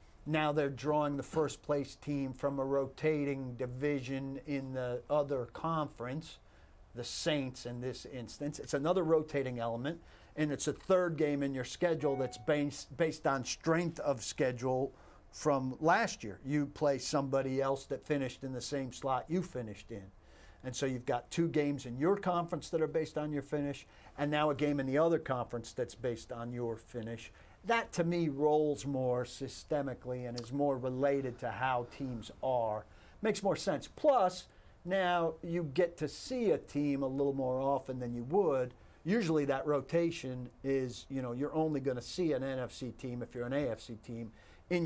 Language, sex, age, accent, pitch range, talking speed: English, male, 50-69, American, 125-155 Hz, 180 wpm